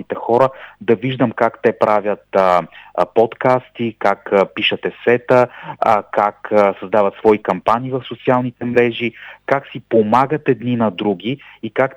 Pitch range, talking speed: 105-125 Hz, 145 wpm